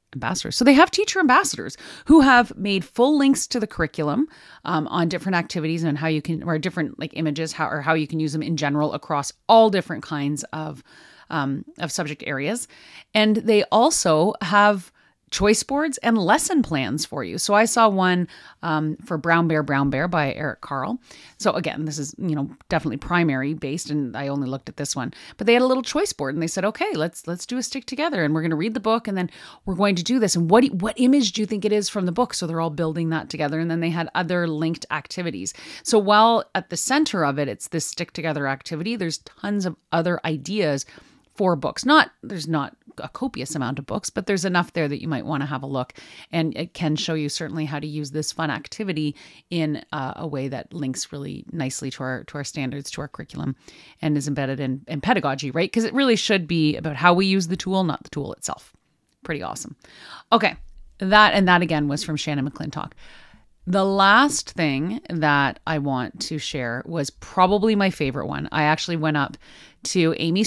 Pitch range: 150-205 Hz